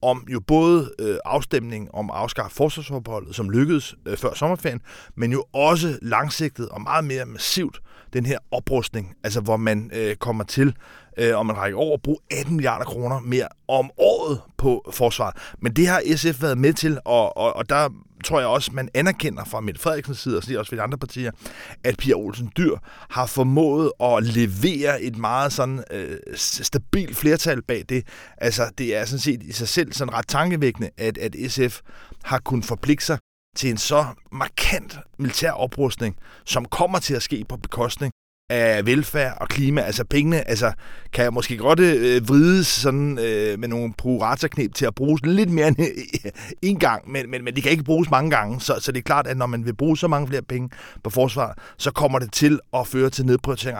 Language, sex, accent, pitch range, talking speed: Danish, male, native, 115-150 Hz, 195 wpm